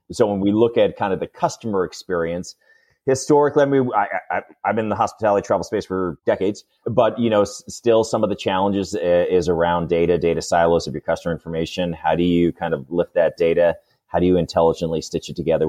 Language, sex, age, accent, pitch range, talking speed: English, male, 30-49, American, 85-105 Hz, 220 wpm